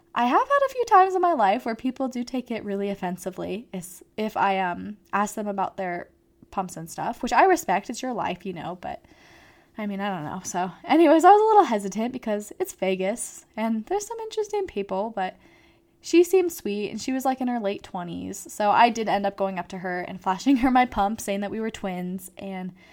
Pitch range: 195-240 Hz